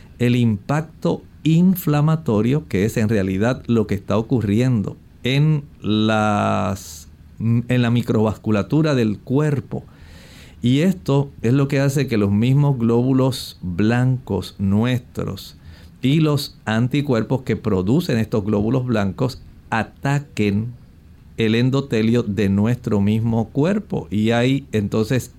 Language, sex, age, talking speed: Spanish, male, 50-69, 115 wpm